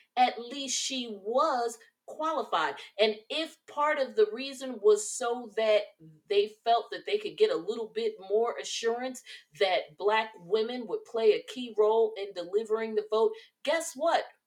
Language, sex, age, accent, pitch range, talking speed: English, female, 30-49, American, 190-280 Hz, 160 wpm